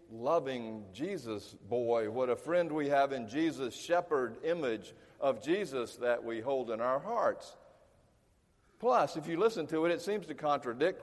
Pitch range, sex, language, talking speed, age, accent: 115-155 Hz, male, English, 165 wpm, 50-69, American